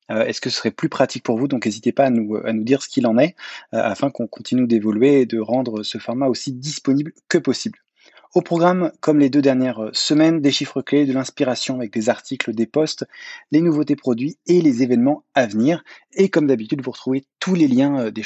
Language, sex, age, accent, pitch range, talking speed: English, male, 20-39, French, 120-150 Hz, 230 wpm